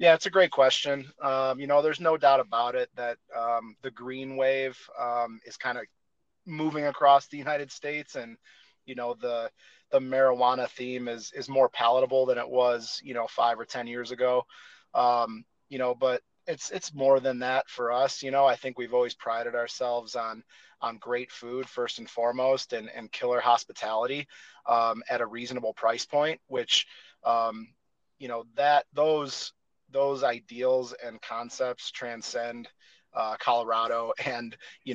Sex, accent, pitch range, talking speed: male, American, 115-135 Hz, 170 wpm